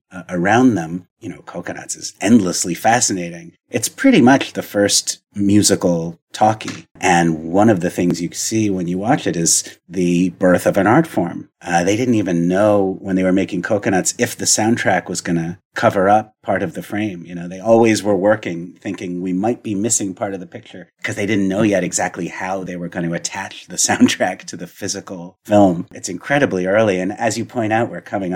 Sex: male